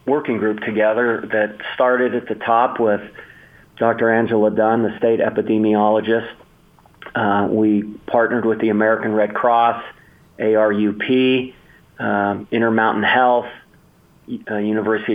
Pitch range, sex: 110-125 Hz, male